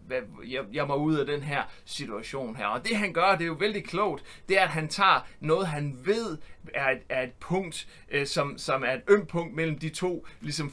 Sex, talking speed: male, 225 wpm